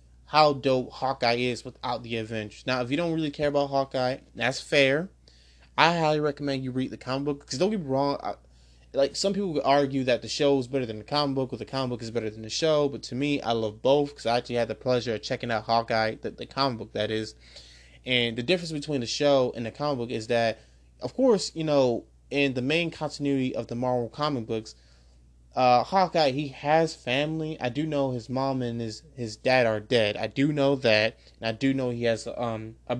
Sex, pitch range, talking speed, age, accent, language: male, 110-140 Hz, 235 wpm, 20-39, American, English